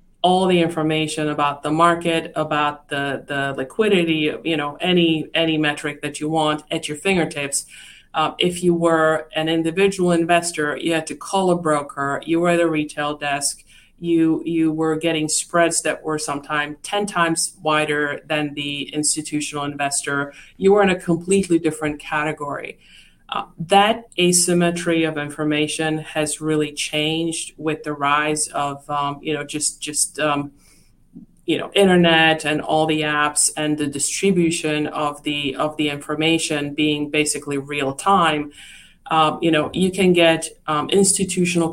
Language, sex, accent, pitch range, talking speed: English, female, American, 150-165 Hz, 155 wpm